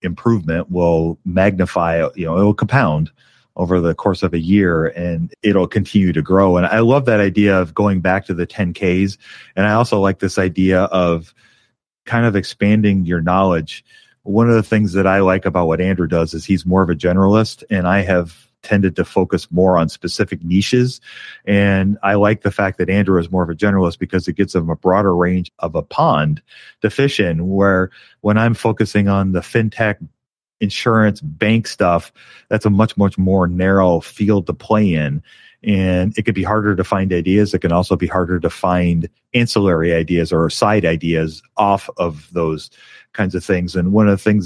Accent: American